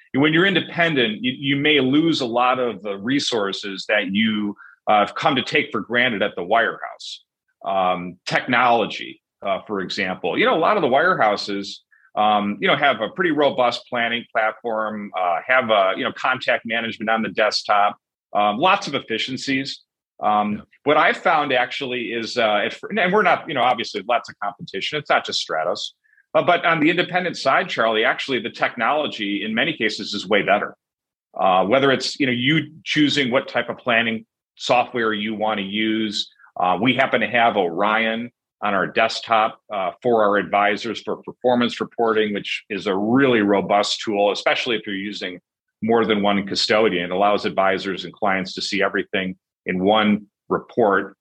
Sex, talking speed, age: male, 180 wpm, 40-59